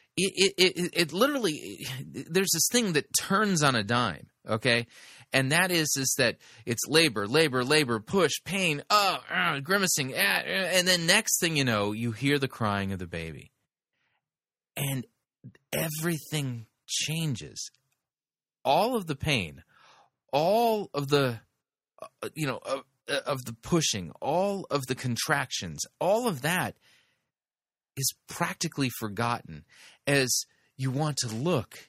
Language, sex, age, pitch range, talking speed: English, male, 30-49, 115-165 Hz, 150 wpm